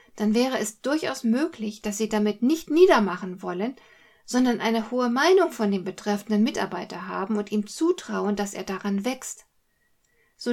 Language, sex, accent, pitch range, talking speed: German, female, German, 210-265 Hz, 160 wpm